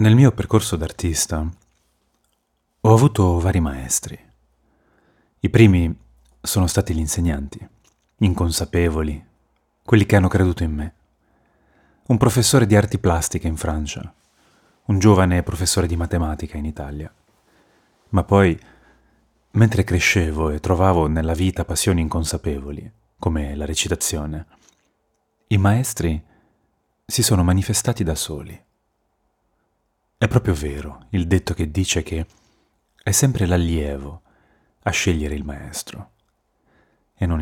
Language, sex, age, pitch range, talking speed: Italian, male, 30-49, 80-105 Hz, 115 wpm